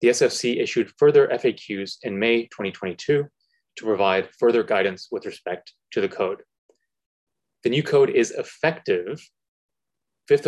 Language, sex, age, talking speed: English, male, 30-49, 130 wpm